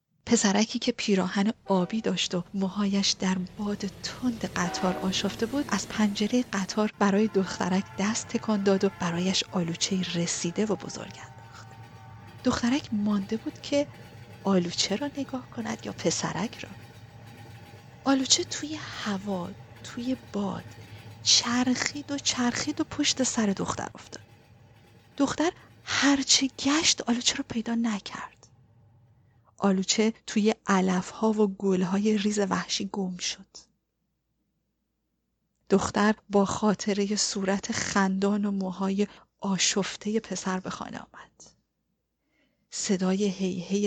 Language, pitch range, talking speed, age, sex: Persian, 175-230 Hz, 110 wpm, 40-59, female